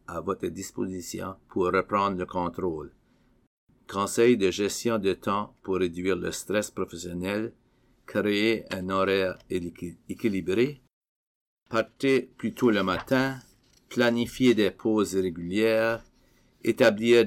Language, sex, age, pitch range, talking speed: English, male, 50-69, 95-115 Hz, 110 wpm